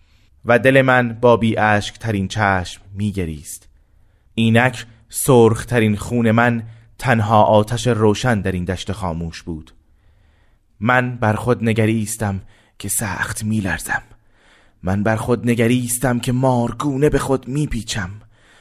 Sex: male